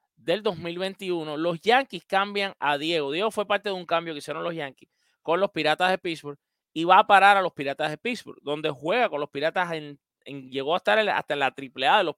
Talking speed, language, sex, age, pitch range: 235 wpm, English, male, 30-49, 145-200 Hz